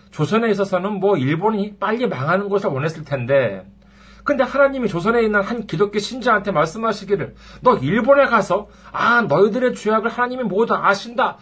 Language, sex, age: Korean, male, 40-59